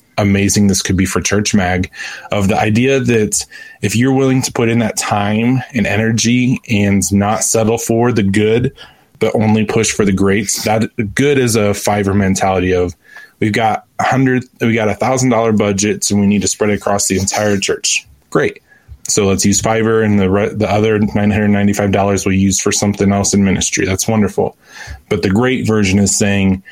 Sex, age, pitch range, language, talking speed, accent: male, 20-39, 100-110 Hz, English, 190 wpm, American